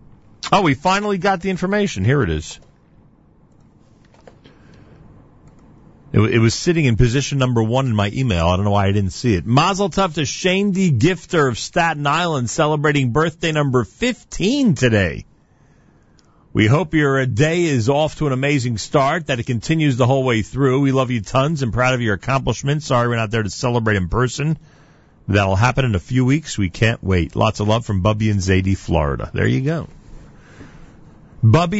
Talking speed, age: 180 wpm, 40-59